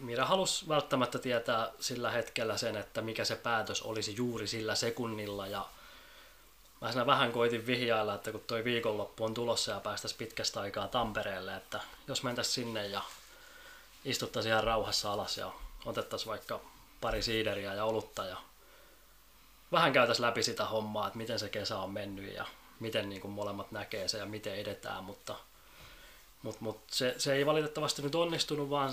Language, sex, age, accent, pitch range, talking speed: Finnish, male, 20-39, native, 110-130 Hz, 160 wpm